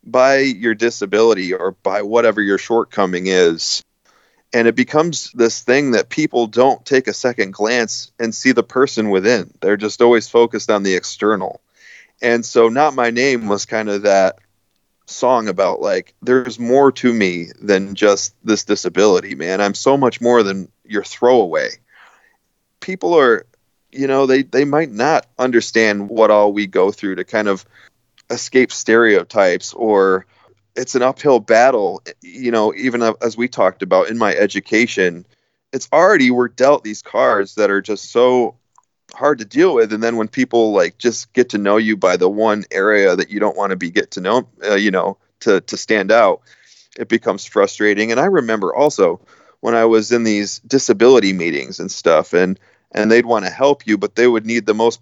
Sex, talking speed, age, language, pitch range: male, 185 wpm, 30-49, English, 105-125 Hz